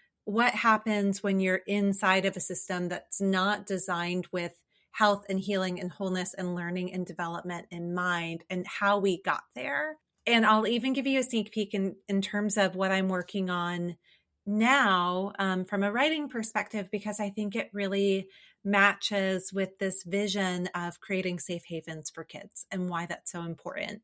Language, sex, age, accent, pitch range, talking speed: English, female, 30-49, American, 175-205 Hz, 175 wpm